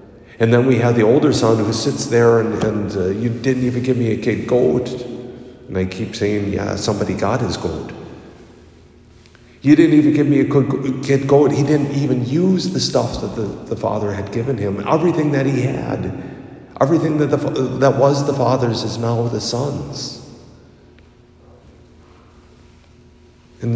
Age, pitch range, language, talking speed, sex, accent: 50-69, 100-130 Hz, English, 170 wpm, male, American